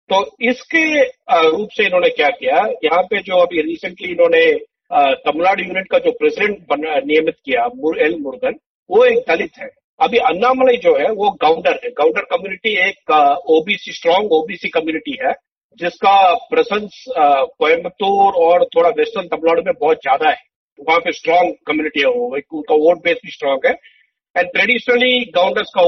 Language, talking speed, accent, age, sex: Hindi, 160 wpm, native, 50-69, male